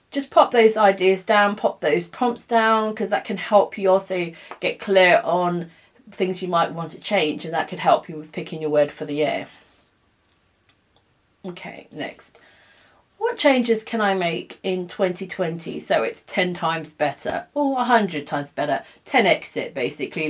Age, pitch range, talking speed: 40-59, 160-205 Hz, 170 wpm